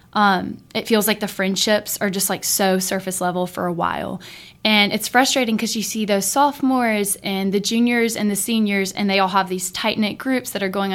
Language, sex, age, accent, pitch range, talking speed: English, female, 20-39, American, 185-215 Hz, 220 wpm